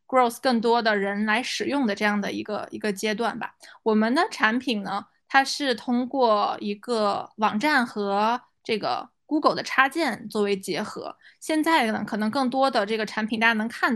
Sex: female